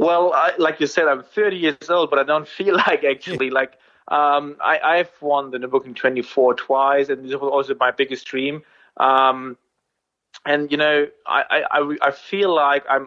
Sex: male